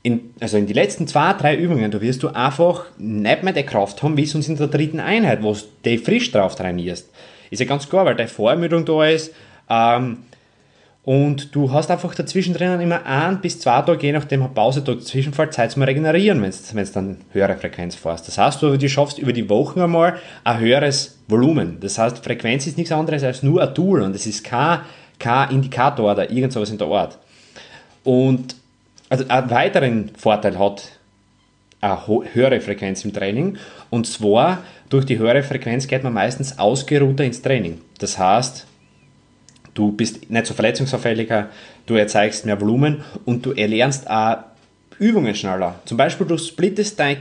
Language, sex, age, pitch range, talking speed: German, male, 30-49, 110-155 Hz, 180 wpm